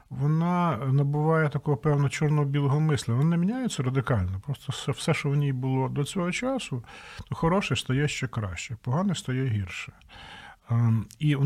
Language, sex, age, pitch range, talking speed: Ukrainian, male, 50-69, 130-155 Hz, 150 wpm